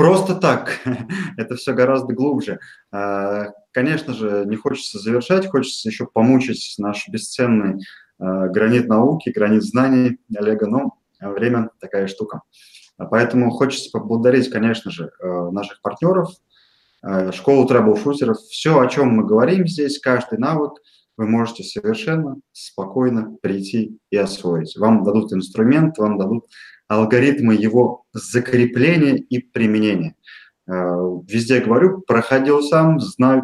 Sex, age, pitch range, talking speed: male, 20-39, 105-135 Hz, 115 wpm